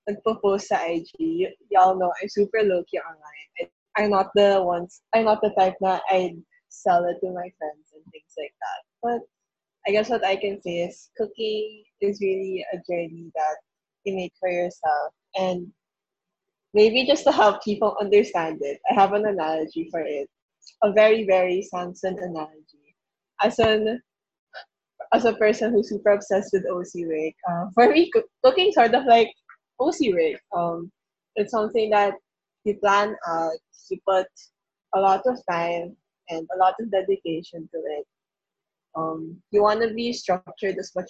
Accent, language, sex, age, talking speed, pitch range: Filipino, English, female, 20-39, 170 wpm, 175-215 Hz